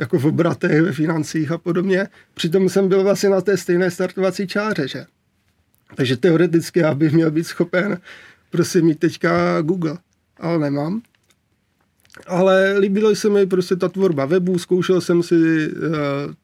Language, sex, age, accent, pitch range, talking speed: Czech, male, 30-49, native, 150-185 Hz, 150 wpm